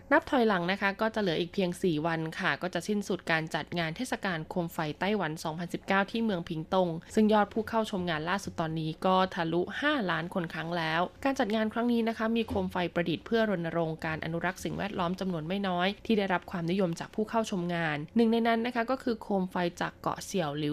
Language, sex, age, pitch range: Thai, female, 20-39, 170-210 Hz